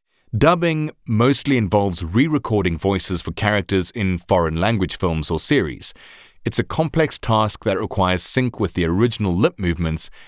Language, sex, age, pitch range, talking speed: English, male, 30-49, 85-120 Hz, 145 wpm